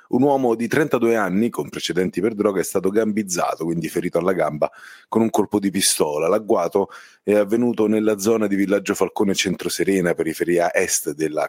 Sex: male